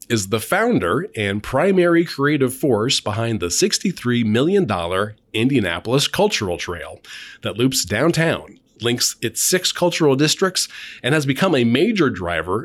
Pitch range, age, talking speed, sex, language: 105-155 Hz, 30-49, 135 wpm, male, English